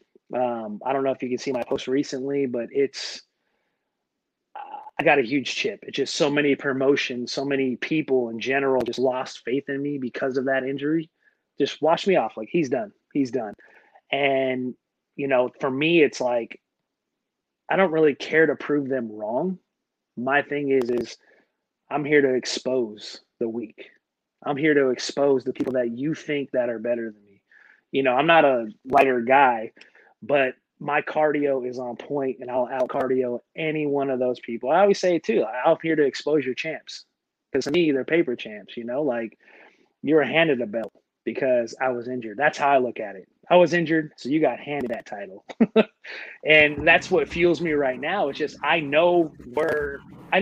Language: English